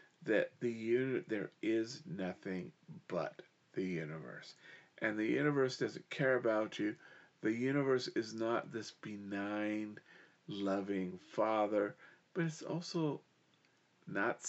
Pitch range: 115-150 Hz